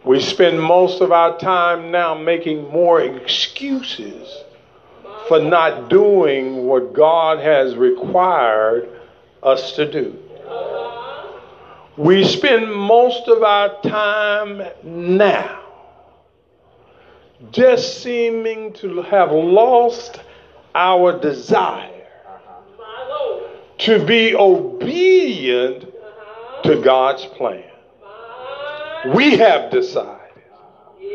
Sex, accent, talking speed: male, American, 85 wpm